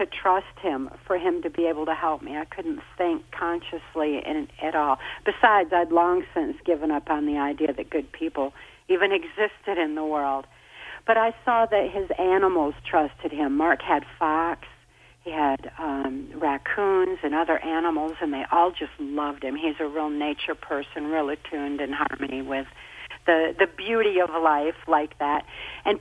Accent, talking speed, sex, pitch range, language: American, 180 wpm, female, 150-185 Hz, English